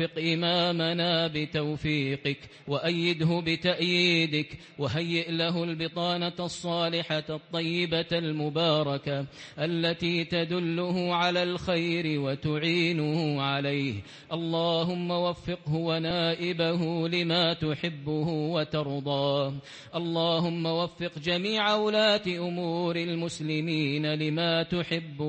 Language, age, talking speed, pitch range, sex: English, 30-49, 75 wpm, 155-175 Hz, male